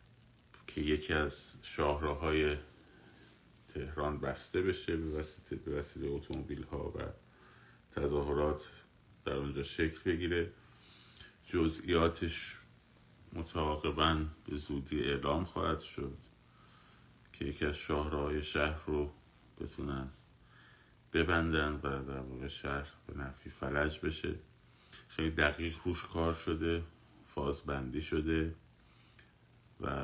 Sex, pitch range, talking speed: male, 70-80 Hz, 95 wpm